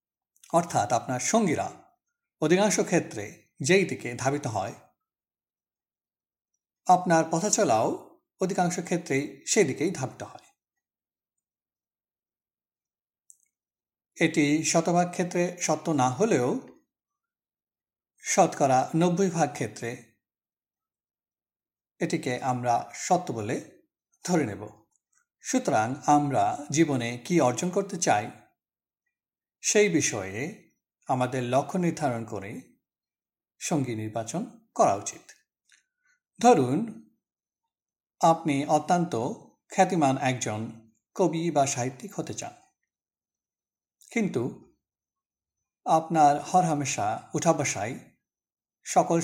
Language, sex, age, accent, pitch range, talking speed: Bengali, male, 60-79, native, 130-185 Hz, 85 wpm